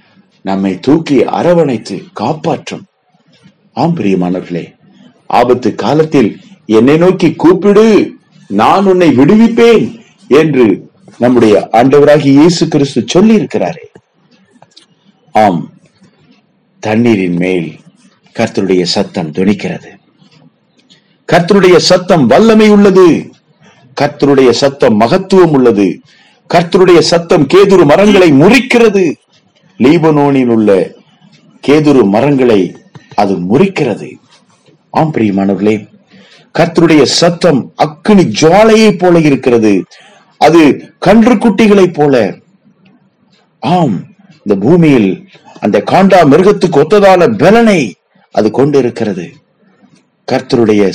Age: 50-69